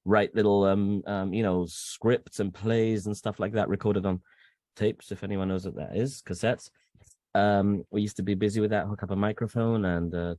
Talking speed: 215 wpm